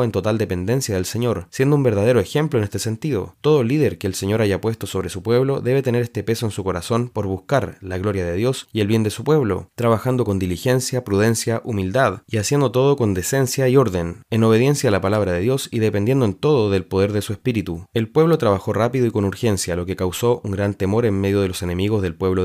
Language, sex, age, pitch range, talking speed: Spanish, male, 20-39, 100-125 Hz, 240 wpm